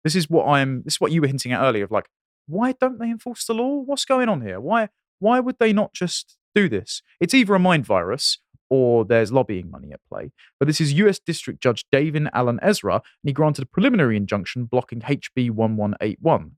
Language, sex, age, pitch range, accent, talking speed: English, male, 30-49, 120-180 Hz, British, 220 wpm